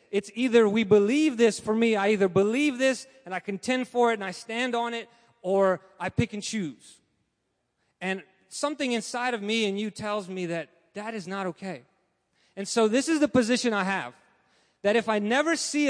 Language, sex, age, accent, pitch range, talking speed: English, male, 30-49, American, 180-245 Hz, 200 wpm